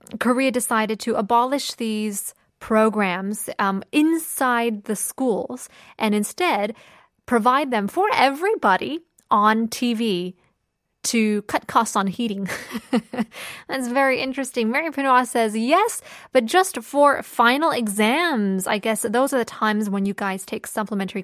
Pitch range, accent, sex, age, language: 205-255 Hz, American, female, 20-39, Korean